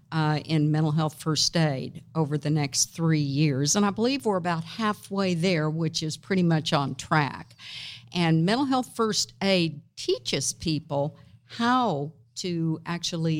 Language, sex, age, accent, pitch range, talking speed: English, female, 50-69, American, 145-175 Hz, 150 wpm